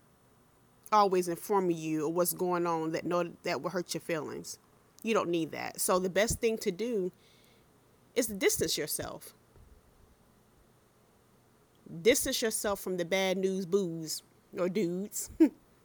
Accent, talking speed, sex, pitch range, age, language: American, 135 wpm, female, 170-215 Hz, 30-49, English